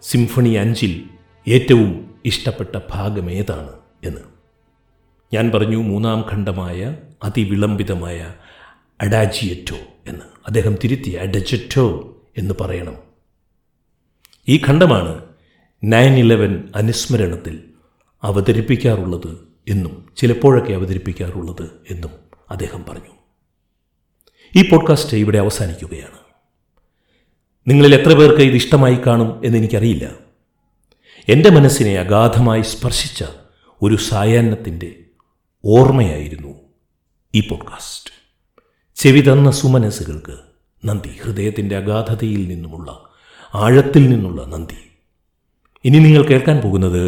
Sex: male